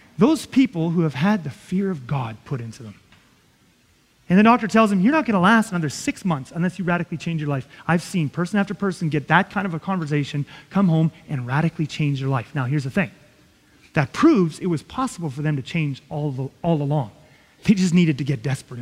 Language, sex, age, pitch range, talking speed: English, male, 30-49, 170-275 Hz, 230 wpm